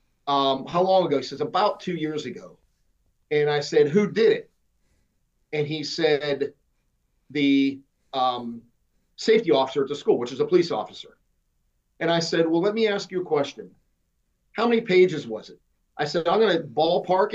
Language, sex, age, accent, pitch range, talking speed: English, male, 40-59, American, 145-190 Hz, 180 wpm